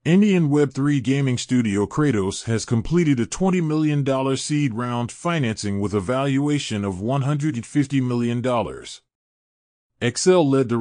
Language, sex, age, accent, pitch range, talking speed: English, male, 30-49, American, 115-145 Hz, 120 wpm